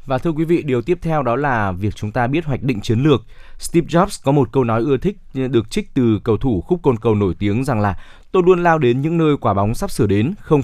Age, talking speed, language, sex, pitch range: 20-39, 275 wpm, Vietnamese, male, 115-145 Hz